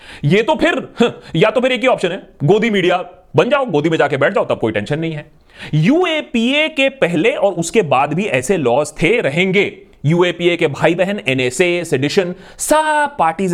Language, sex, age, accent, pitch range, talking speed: Hindi, male, 30-49, native, 160-240 Hz, 180 wpm